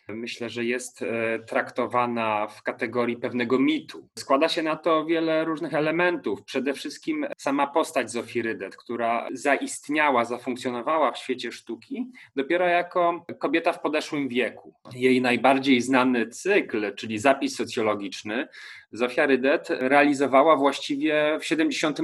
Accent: native